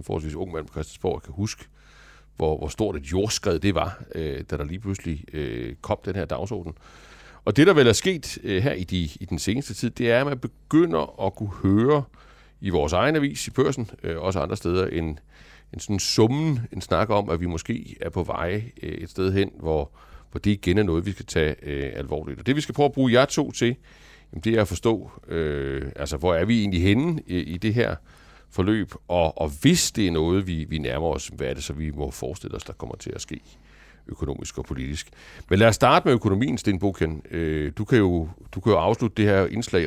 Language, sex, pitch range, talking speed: Danish, male, 80-110 Hz, 220 wpm